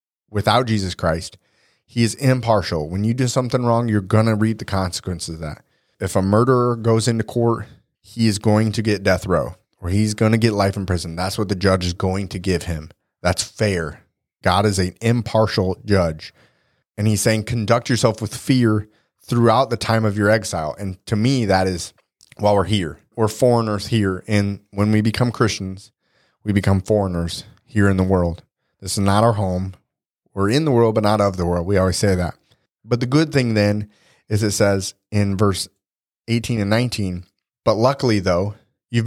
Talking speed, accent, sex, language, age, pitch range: 195 wpm, American, male, English, 30-49, 95-115 Hz